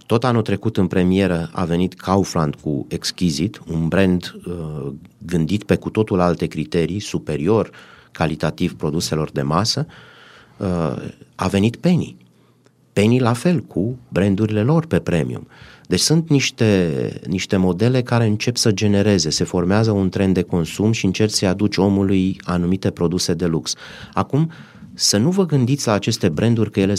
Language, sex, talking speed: Romanian, male, 155 wpm